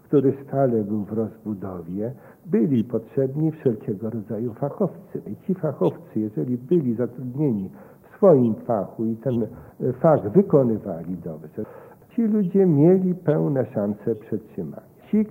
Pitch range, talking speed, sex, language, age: 115-140 Hz, 120 wpm, male, Polish, 60-79